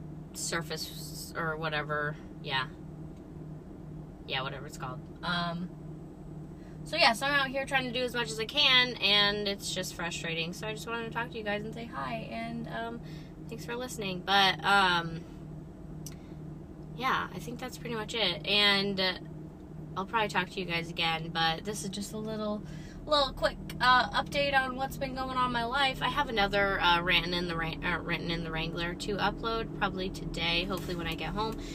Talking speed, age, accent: 185 wpm, 20-39, American